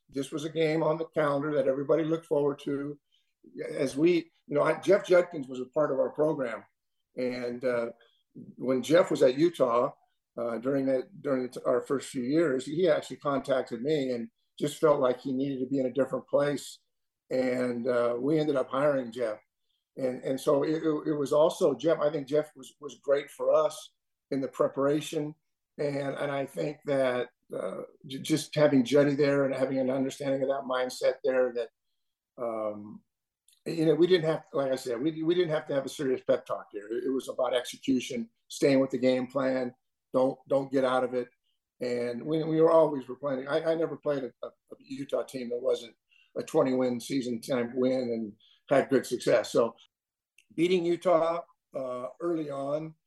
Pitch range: 130-155 Hz